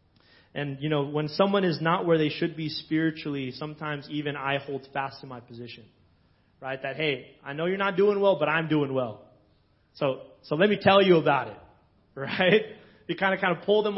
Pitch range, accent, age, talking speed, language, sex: 130-160 Hz, American, 30-49, 210 wpm, English, male